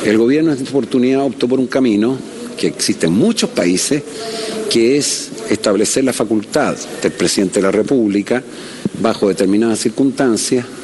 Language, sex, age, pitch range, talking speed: Spanish, male, 50-69, 115-140 Hz, 150 wpm